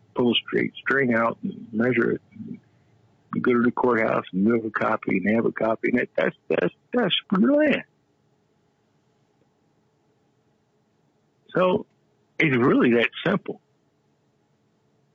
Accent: American